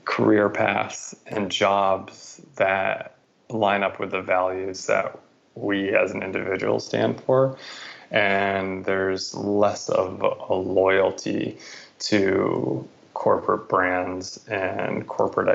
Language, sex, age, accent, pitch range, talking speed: English, male, 20-39, American, 95-100 Hz, 110 wpm